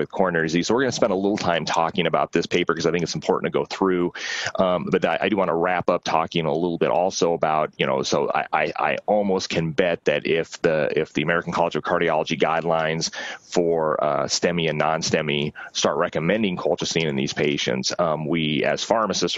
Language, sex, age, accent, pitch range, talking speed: English, male, 30-49, American, 80-90 Hz, 225 wpm